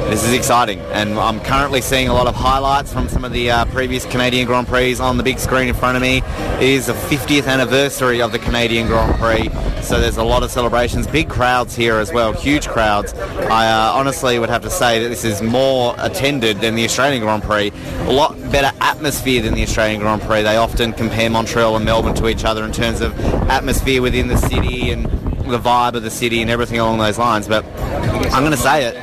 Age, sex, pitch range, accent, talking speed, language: 30-49, male, 105-125 Hz, Australian, 225 wpm, English